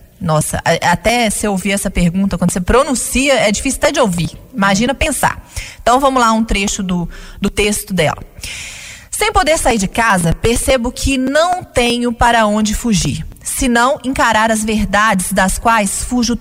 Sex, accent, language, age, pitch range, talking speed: female, Brazilian, Portuguese, 30-49, 205-260 Hz, 170 wpm